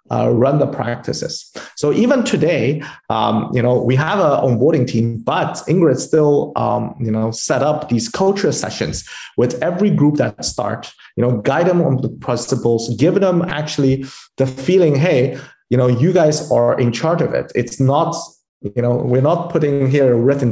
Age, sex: 30-49, male